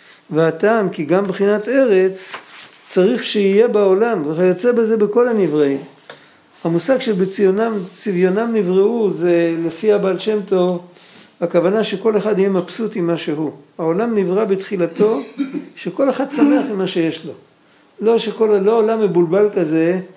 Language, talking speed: Hebrew, 130 wpm